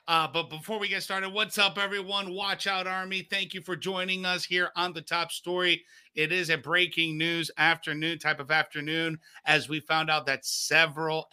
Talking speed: 195 wpm